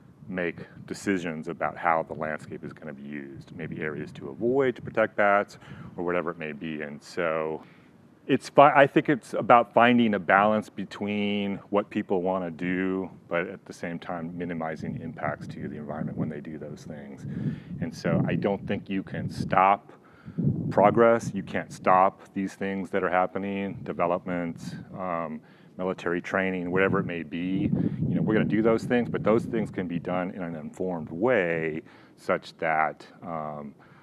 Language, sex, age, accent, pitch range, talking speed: English, male, 30-49, American, 85-105 Hz, 175 wpm